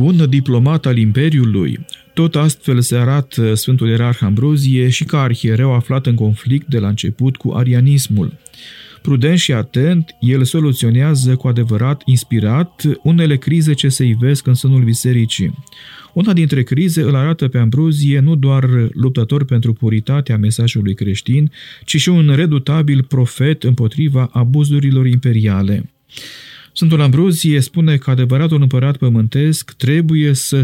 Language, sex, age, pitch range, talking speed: Romanian, male, 40-59, 120-150 Hz, 135 wpm